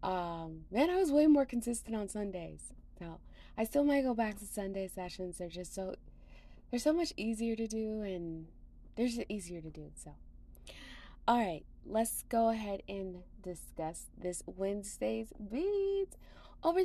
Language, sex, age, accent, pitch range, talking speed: English, female, 20-39, American, 180-235 Hz, 165 wpm